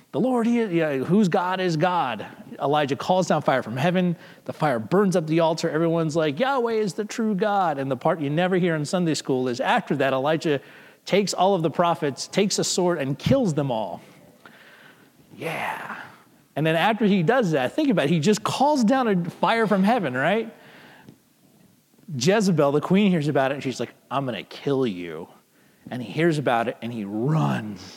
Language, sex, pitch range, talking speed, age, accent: English, male, 125-190 Hz, 195 wpm, 30-49, American